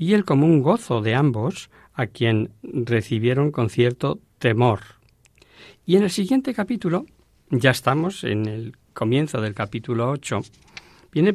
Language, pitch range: Spanish, 110-145 Hz